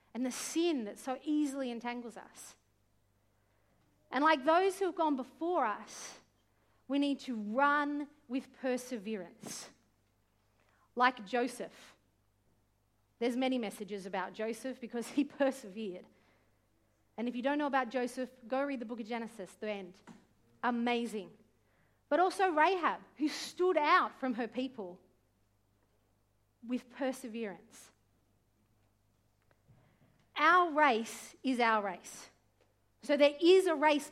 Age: 40-59